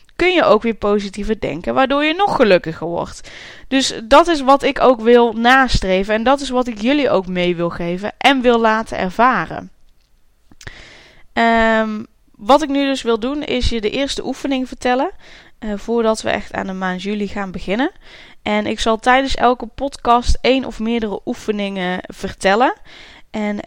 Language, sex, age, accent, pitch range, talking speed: Dutch, female, 10-29, Dutch, 205-255 Hz, 170 wpm